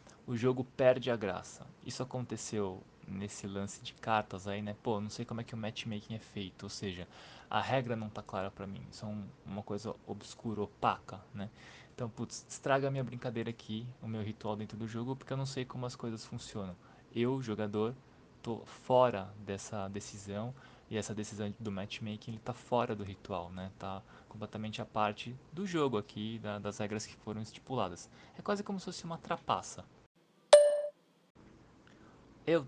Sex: male